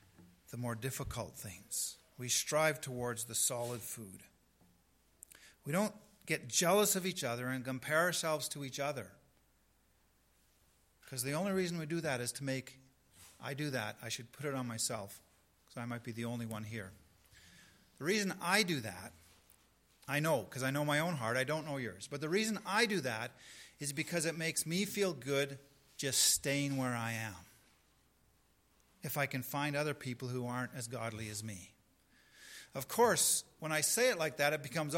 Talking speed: 185 wpm